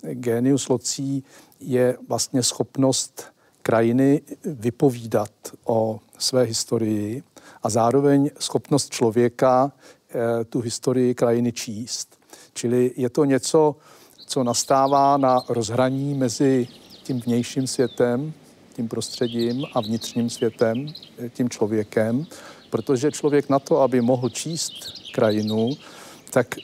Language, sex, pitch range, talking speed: Czech, male, 120-135 Hz, 105 wpm